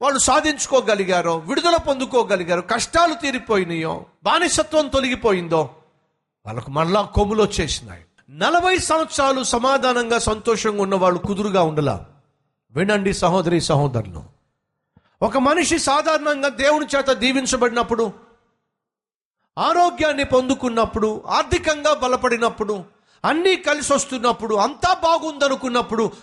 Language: Telugu